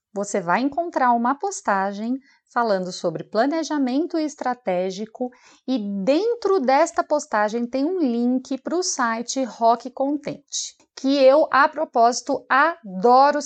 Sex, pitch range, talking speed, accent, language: female, 200-280 Hz, 115 wpm, Brazilian, Portuguese